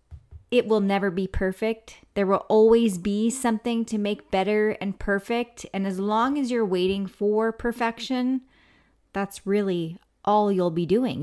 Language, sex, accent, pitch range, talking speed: English, female, American, 175-230 Hz, 155 wpm